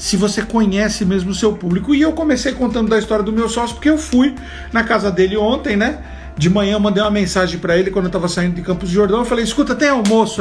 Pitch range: 185-220 Hz